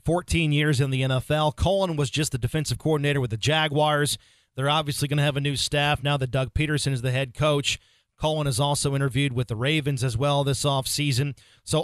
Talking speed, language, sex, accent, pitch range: 215 wpm, English, male, American, 140-165 Hz